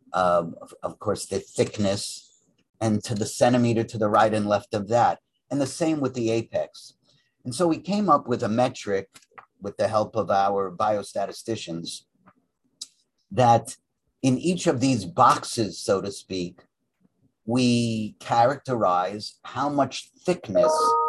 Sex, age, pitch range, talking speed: male, 50-69, 105-135 Hz, 145 wpm